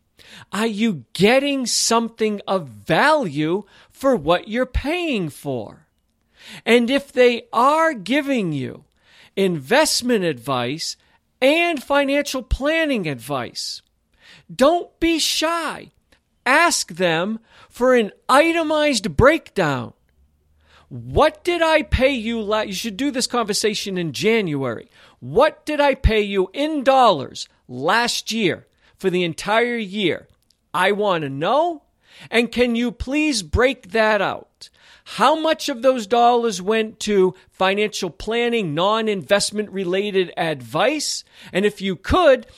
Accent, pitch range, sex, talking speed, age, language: American, 185-260 Hz, male, 120 wpm, 50-69, English